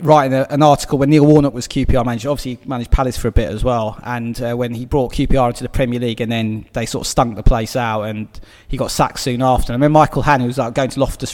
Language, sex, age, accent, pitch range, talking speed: English, male, 30-49, British, 120-150 Hz, 290 wpm